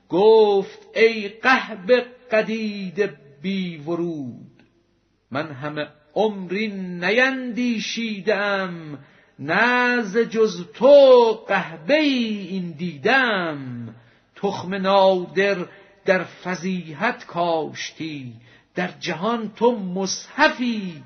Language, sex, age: Persian, male, 50-69